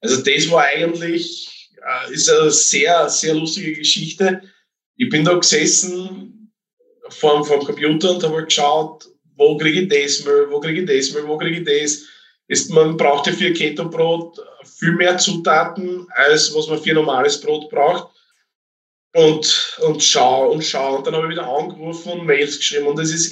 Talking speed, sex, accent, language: 175 wpm, male, Austrian, German